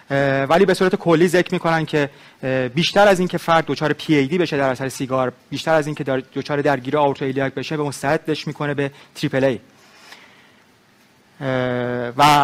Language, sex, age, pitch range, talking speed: Persian, male, 30-49, 140-160 Hz, 160 wpm